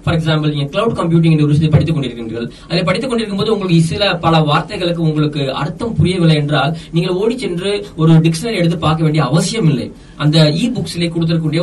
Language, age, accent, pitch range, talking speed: Tamil, 20-39, native, 155-180 Hz, 90 wpm